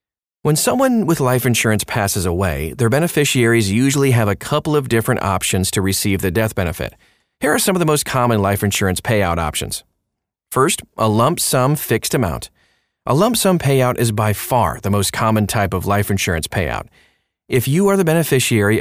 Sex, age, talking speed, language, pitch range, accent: male, 30-49, 185 wpm, English, 100-135 Hz, American